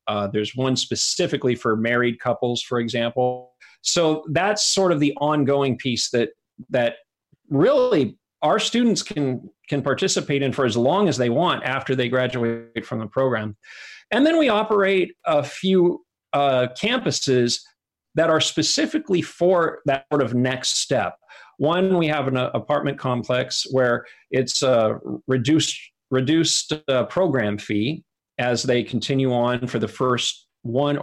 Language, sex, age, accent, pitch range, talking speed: English, male, 40-59, American, 120-155 Hz, 150 wpm